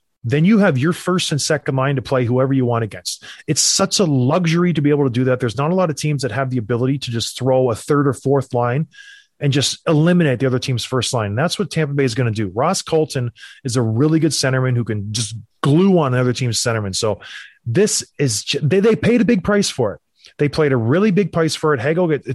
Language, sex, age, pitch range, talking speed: English, male, 30-49, 125-165 Hz, 260 wpm